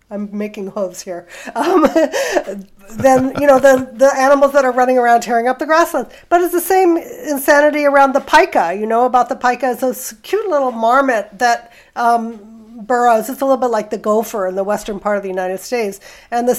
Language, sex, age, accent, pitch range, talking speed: English, female, 50-69, American, 215-270 Hz, 205 wpm